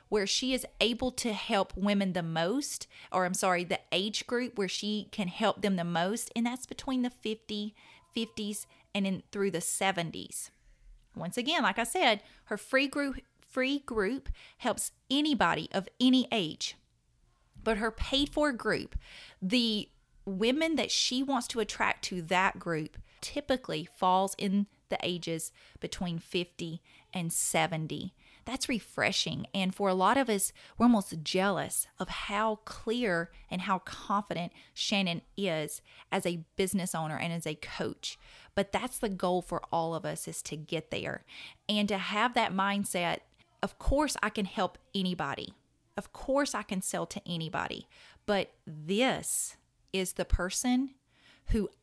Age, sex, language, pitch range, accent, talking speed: 30-49, female, English, 180-235 Hz, American, 155 wpm